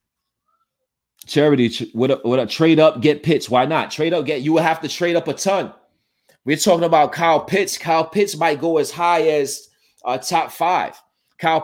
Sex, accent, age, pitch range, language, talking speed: male, American, 30-49, 140-195 Hz, English, 190 wpm